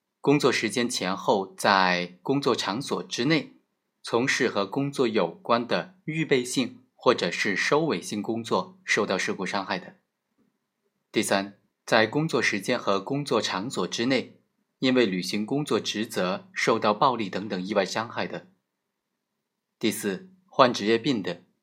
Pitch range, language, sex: 105-155 Hz, Chinese, male